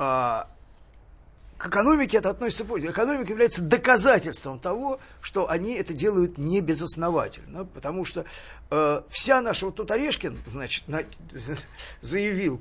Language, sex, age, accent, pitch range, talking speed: Russian, male, 50-69, native, 150-215 Hz, 115 wpm